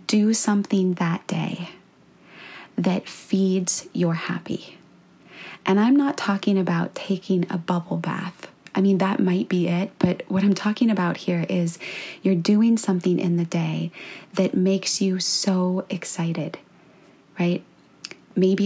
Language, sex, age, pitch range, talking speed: English, female, 20-39, 175-190 Hz, 140 wpm